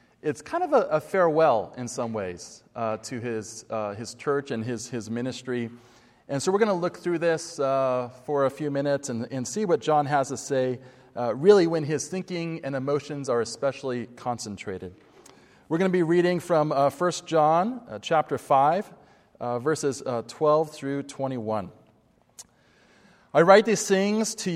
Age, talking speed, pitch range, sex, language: 30-49, 180 wpm, 130-175 Hz, male, English